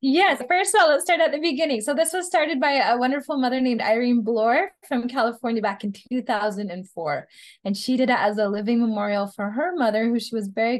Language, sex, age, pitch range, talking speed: English, female, 10-29, 205-260 Hz, 220 wpm